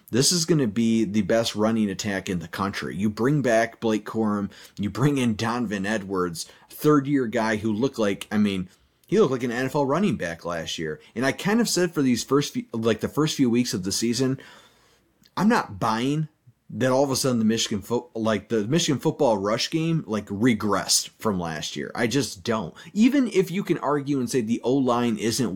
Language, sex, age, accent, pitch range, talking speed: English, male, 30-49, American, 105-140 Hz, 210 wpm